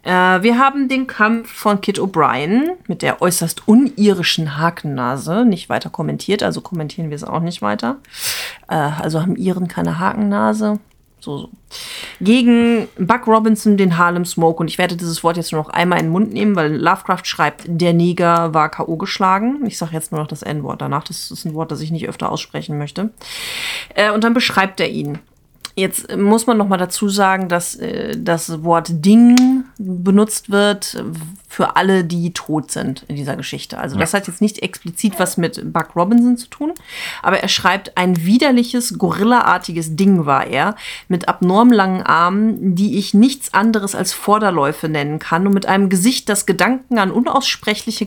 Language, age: German, 30-49